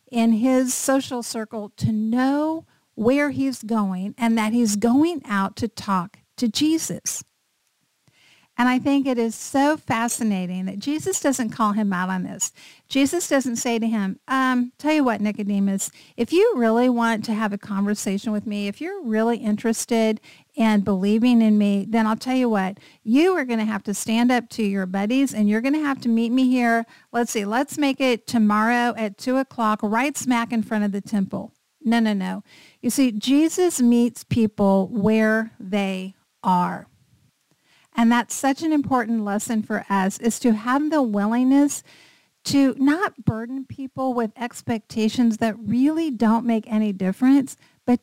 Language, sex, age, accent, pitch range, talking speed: English, female, 50-69, American, 210-260 Hz, 175 wpm